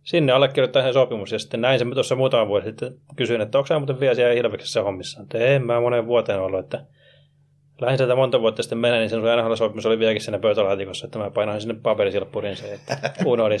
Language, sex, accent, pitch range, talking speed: Finnish, male, native, 115-145 Hz, 220 wpm